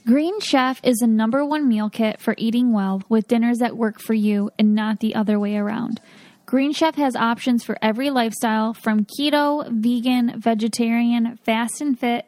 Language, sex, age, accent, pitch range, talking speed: English, female, 10-29, American, 225-255 Hz, 180 wpm